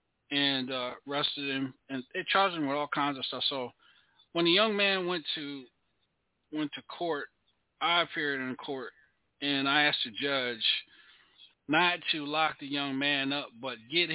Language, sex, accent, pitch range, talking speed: English, male, American, 130-150 Hz, 170 wpm